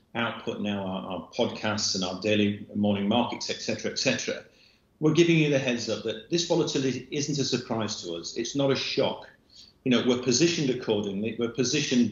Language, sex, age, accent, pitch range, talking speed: English, male, 40-59, British, 105-135 Hz, 190 wpm